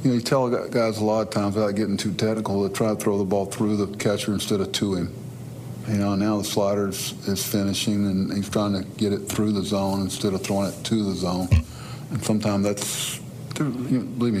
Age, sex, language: 50-69, male, English